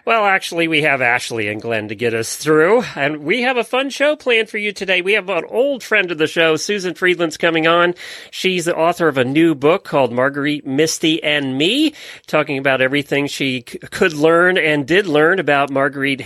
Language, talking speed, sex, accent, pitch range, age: English, 210 wpm, male, American, 130-195 Hz, 40-59